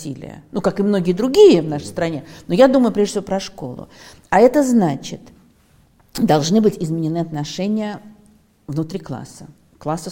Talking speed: 150 wpm